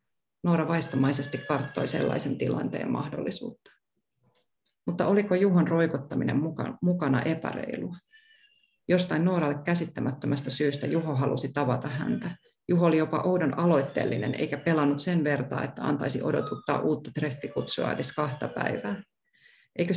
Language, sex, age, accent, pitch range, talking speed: Finnish, female, 30-49, native, 140-175 Hz, 115 wpm